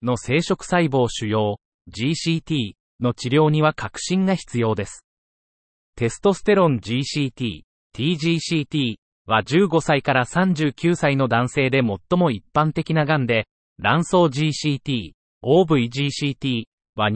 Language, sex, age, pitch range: Japanese, male, 30-49, 120-165 Hz